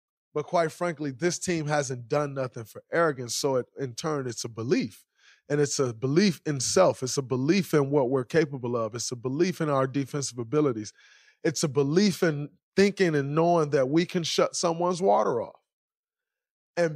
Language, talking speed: English, 185 wpm